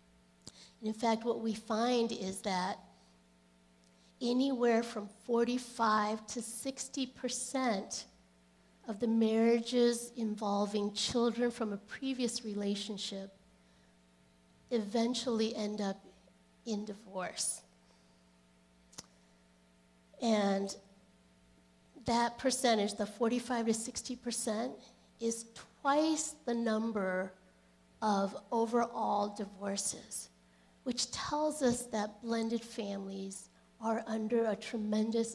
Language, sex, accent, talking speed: English, female, American, 90 wpm